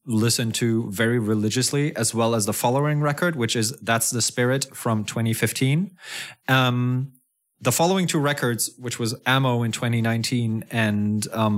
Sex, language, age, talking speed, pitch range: male, English, 20-39, 140 wpm, 110-135 Hz